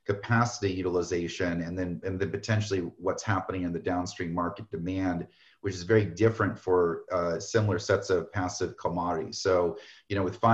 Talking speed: 165 wpm